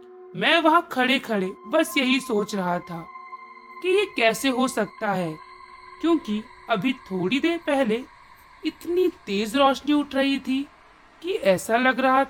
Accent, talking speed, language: native, 145 wpm, Hindi